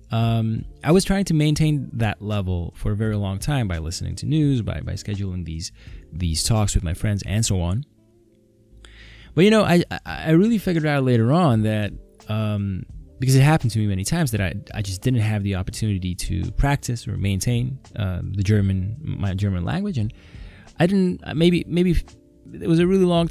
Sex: male